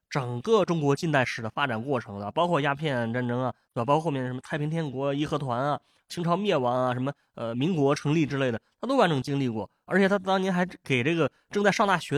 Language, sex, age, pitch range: Chinese, male, 20-39, 130-185 Hz